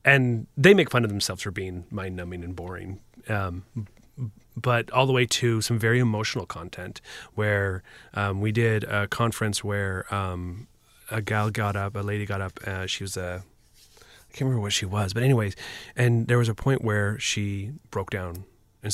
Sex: male